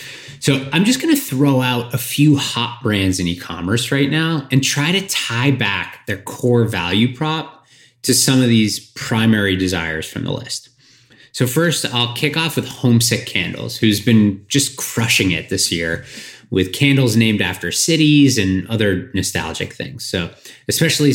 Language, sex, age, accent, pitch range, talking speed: English, male, 20-39, American, 105-135 Hz, 165 wpm